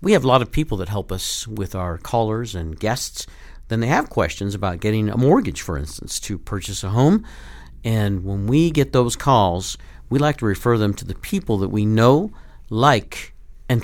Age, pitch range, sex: 50-69, 100-140 Hz, male